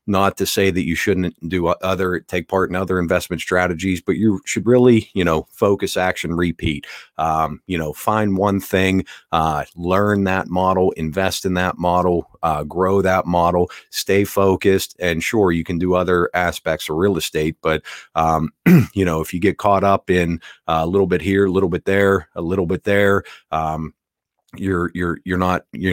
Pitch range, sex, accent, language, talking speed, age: 85-95 Hz, male, American, English, 190 wpm, 40-59